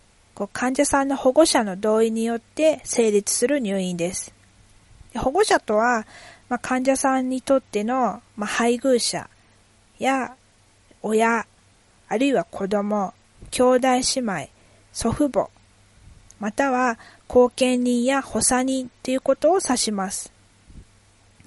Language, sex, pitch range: Japanese, female, 170-260 Hz